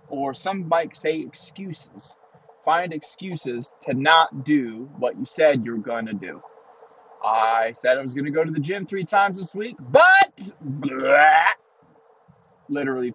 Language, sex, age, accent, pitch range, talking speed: English, male, 20-39, American, 125-165 Hz, 140 wpm